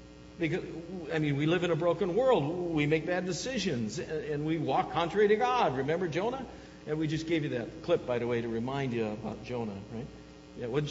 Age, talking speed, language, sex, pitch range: 60-79, 215 wpm, English, male, 130-205 Hz